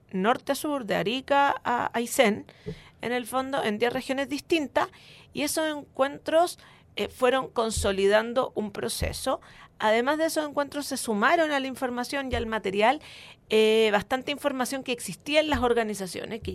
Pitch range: 220-285 Hz